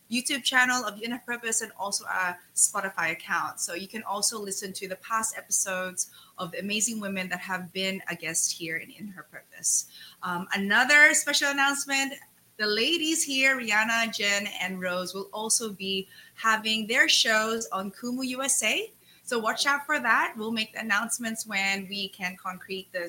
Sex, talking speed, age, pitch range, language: female, 170 wpm, 20-39, 190-255 Hz, English